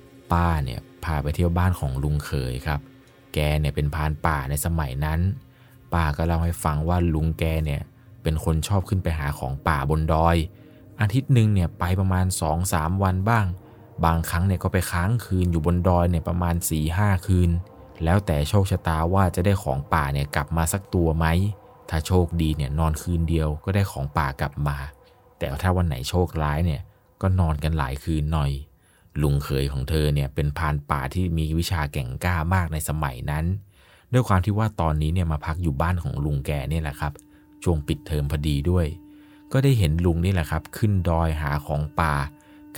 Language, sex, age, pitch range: Thai, male, 20-39, 75-95 Hz